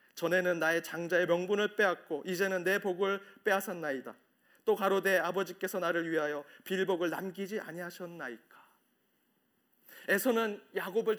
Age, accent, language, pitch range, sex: 30-49, native, Korean, 175-220 Hz, male